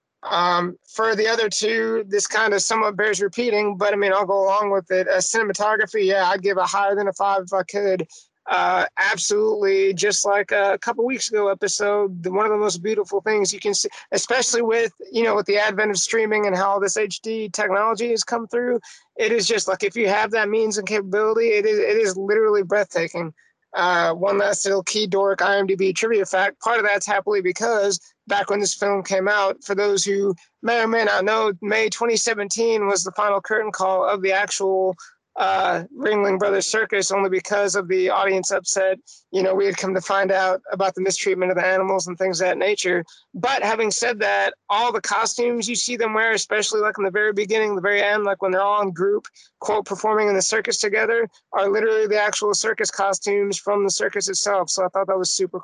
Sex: male